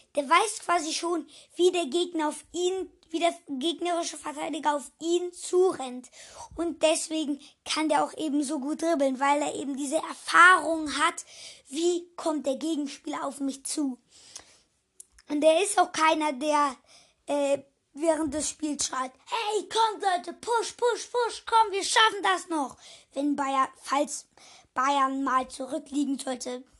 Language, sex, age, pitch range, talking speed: German, female, 20-39, 280-345 Hz, 150 wpm